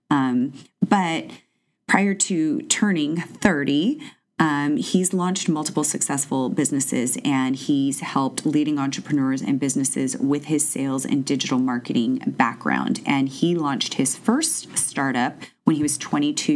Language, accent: English, American